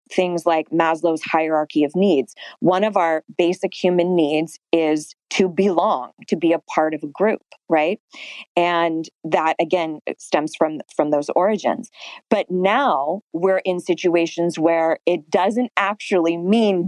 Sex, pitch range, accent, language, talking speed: female, 165-195 Hz, American, English, 145 wpm